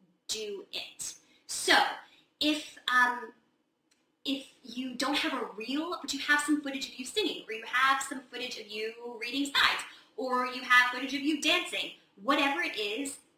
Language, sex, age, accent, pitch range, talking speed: English, female, 20-39, American, 225-300 Hz, 170 wpm